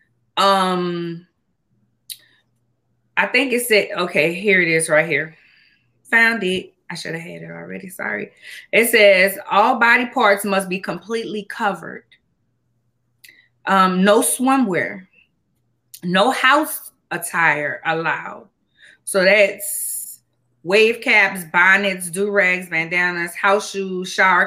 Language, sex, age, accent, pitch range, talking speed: English, female, 20-39, American, 170-205 Hz, 115 wpm